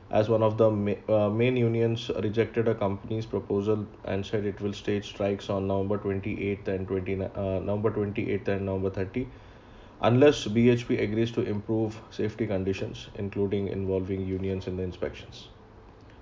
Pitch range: 100-115 Hz